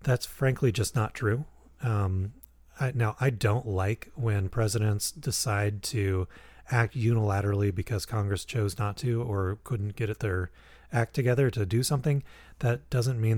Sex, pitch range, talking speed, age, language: male, 100-125 Hz, 150 wpm, 30-49, English